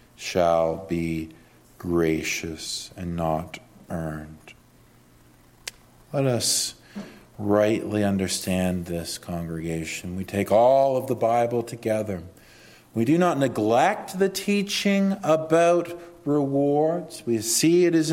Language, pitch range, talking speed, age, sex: English, 90-120 Hz, 105 wpm, 50-69, male